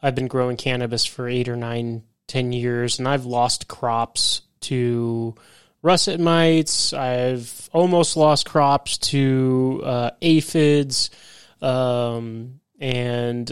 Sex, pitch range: male, 125-145 Hz